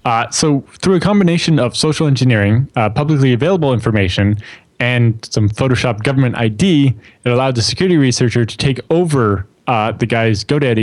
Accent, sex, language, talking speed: American, male, English, 160 wpm